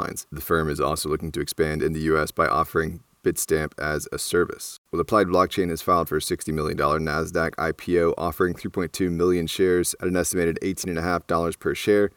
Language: English